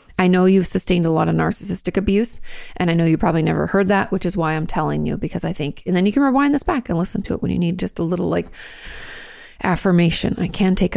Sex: female